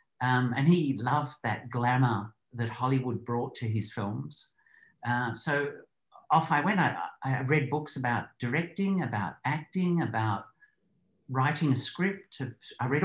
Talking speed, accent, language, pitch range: 145 wpm, Australian, English, 120-170 Hz